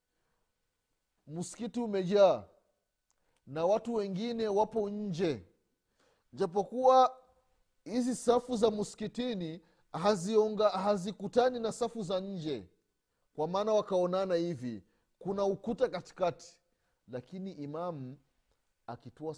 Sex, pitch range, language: male, 125-200 Hz, Swahili